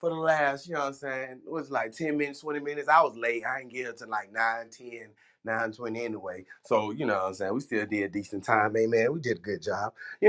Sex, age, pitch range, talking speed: male, 20-39, 115-150 Hz, 280 wpm